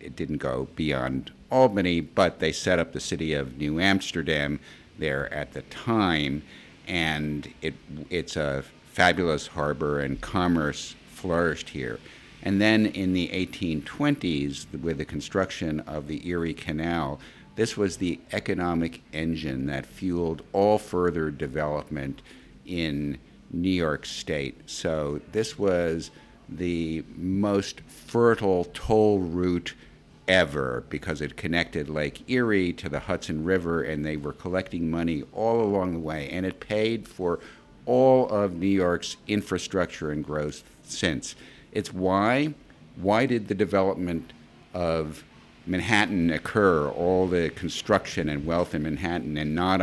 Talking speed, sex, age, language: 130 wpm, male, 50-69, English